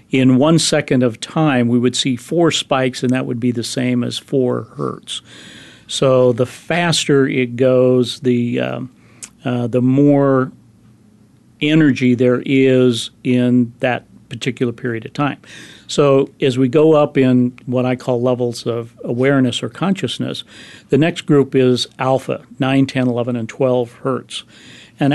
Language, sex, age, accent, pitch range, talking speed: English, male, 40-59, American, 120-135 Hz, 155 wpm